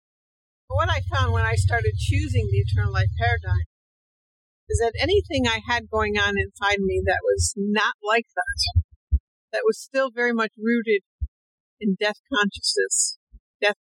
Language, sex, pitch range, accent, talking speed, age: English, female, 190-235 Hz, American, 155 wpm, 60-79